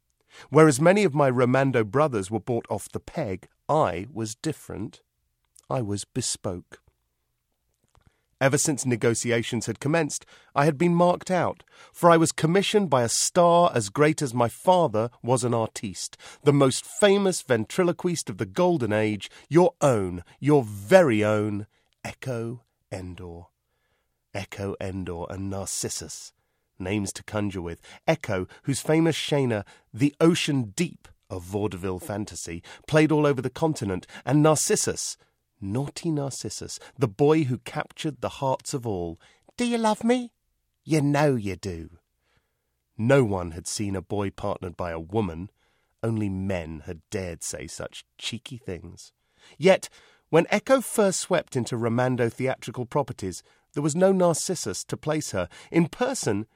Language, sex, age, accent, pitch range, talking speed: English, male, 40-59, British, 95-155 Hz, 145 wpm